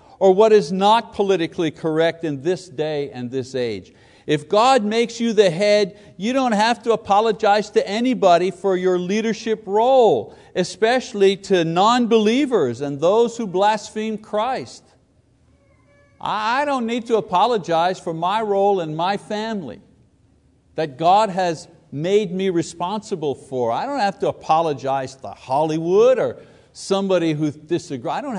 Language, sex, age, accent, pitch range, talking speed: English, male, 50-69, American, 130-205 Hz, 145 wpm